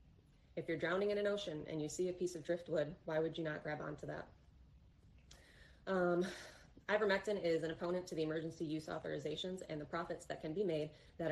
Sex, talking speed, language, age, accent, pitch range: female, 200 wpm, English, 20-39, American, 150-180 Hz